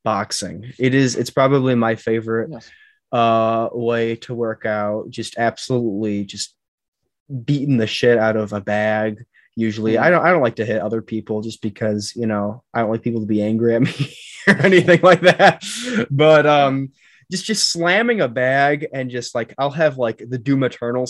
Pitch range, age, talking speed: 115-145 Hz, 20-39, 185 wpm